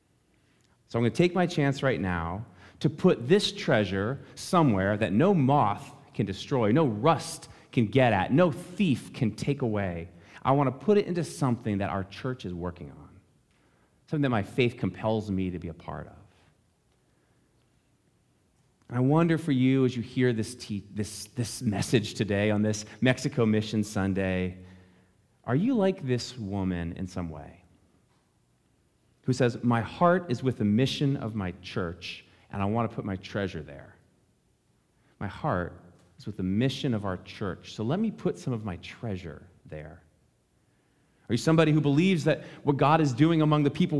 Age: 30-49